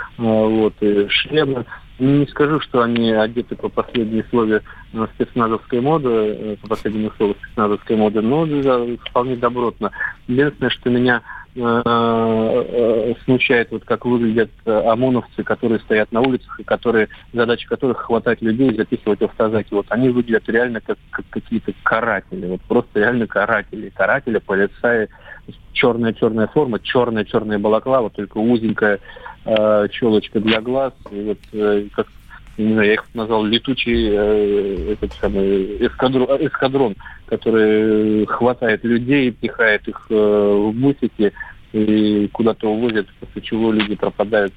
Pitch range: 105-120 Hz